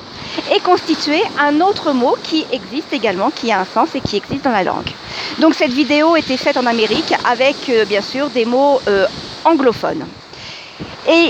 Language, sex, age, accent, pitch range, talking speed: French, female, 50-69, French, 235-305 Hz, 175 wpm